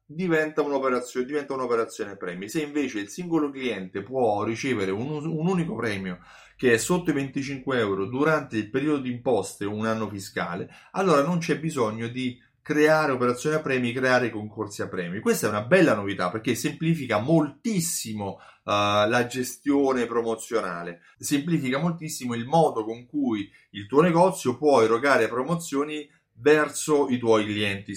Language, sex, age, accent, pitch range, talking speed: Italian, male, 30-49, native, 105-145 Hz, 150 wpm